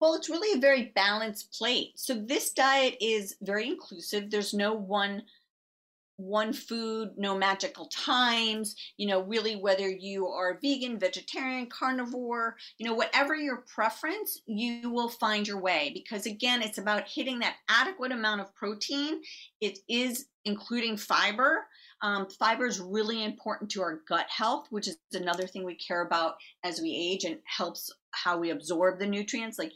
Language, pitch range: English, 185-235 Hz